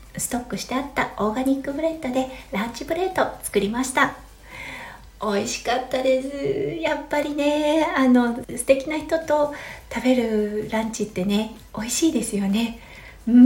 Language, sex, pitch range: Japanese, female, 200-265 Hz